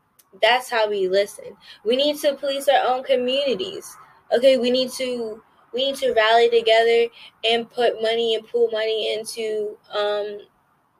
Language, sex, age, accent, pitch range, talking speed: English, female, 10-29, American, 190-240 Hz, 155 wpm